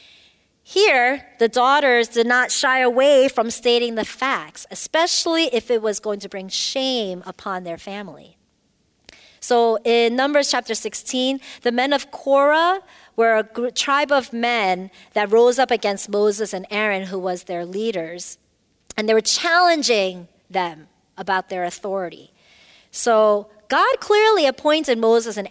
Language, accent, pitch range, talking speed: English, American, 200-265 Hz, 145 wpm